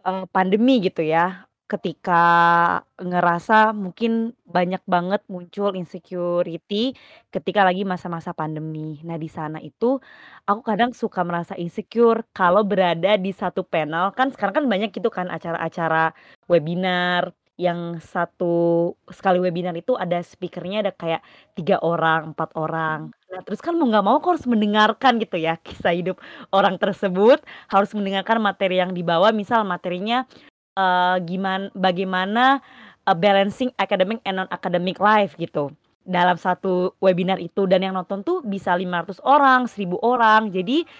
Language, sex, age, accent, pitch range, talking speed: Indonesian, female, 20-39, native, 180-220 Hz, 140 wpm